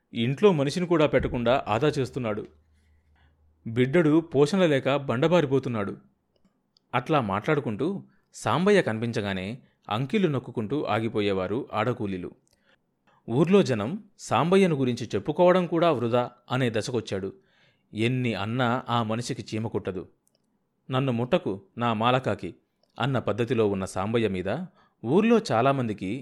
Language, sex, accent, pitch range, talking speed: Telugu, male, native, 110-155 Hz, 95 wpm